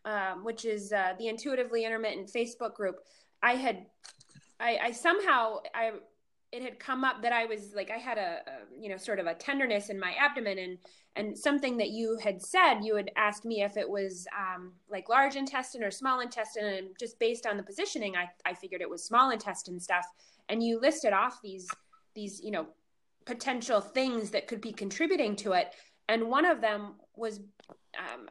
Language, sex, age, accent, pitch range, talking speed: English, female, 20-39, American, 200-255 Hz, 195 wpm